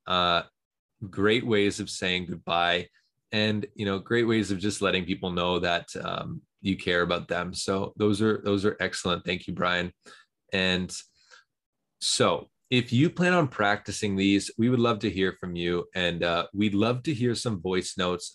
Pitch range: 90-115 Hz